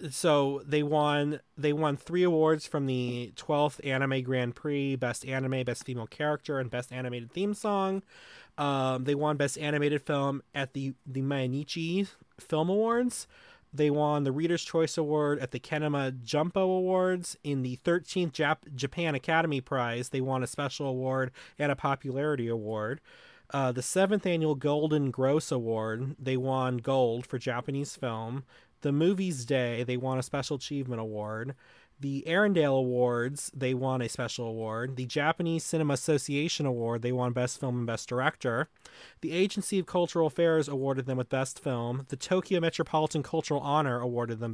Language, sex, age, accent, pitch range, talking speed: English, male, 30-49, American, 130-155 Hz, 165 wpm